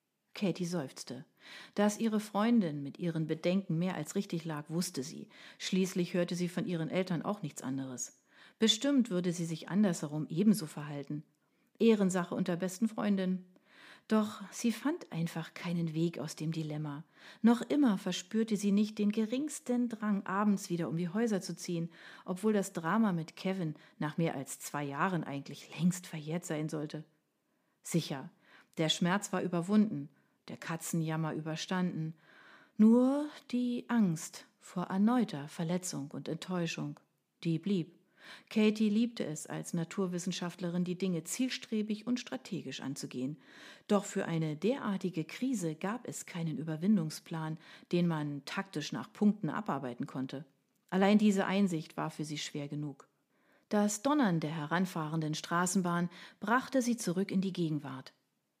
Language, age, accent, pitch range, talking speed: German, 40-59, German, 160-210 Hz, 140 wpm